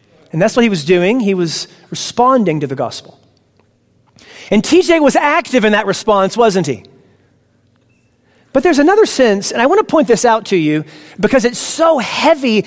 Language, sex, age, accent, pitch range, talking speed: English, male, 40-59, American, 165-240 Hz, 175 wpm